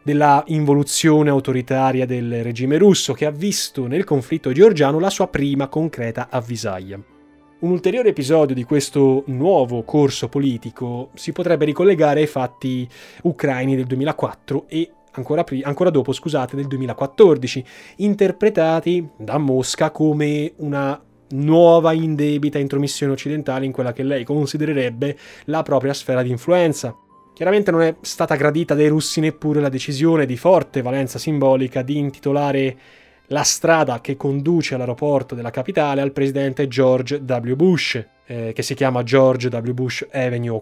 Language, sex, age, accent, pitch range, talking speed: Italian, male, 20-39, native, 130-155 Hz, 140 wpm